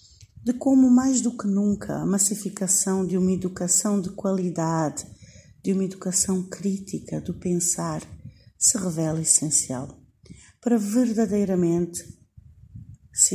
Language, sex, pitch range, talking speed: Portuguese, female, 165-225 Hz, 110 wpm